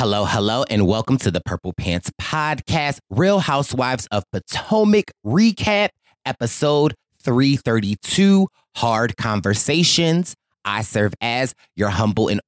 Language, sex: English, male